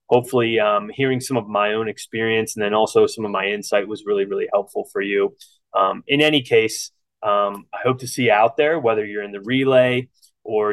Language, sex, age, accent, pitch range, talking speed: English, male, 20-39, American, 110-135 Hz, 220 wpm